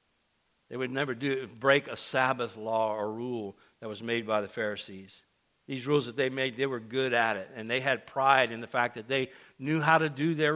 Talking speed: 225 wpm